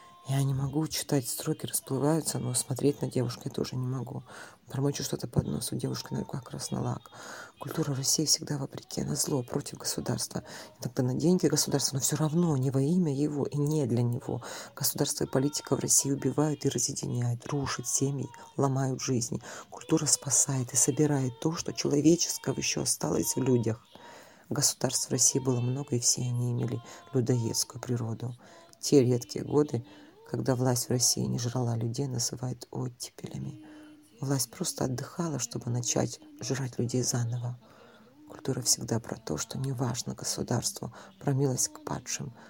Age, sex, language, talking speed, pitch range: 40-59, female, Russian, 160 wpm, 120-145 Hz